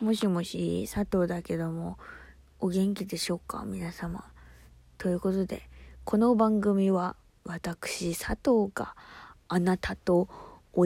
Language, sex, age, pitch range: Japanese, female, 20-39, 170-220 Hz